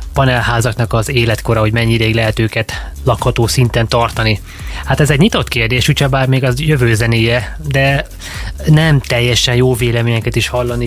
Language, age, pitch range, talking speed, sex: Hungarian, 20-39, 120-135 Hz, 155 wpm, male